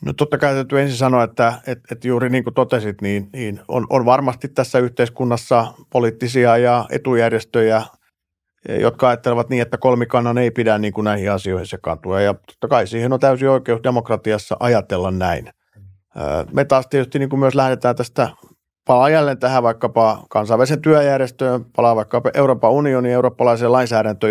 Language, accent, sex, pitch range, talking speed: Finnish, native, male, 105-125 Hz, 155 wpm